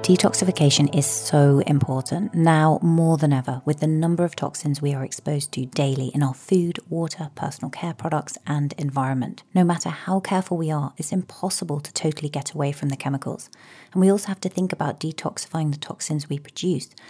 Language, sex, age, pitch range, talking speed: English, female, 30-49, 145-175 Hz, 190 wpm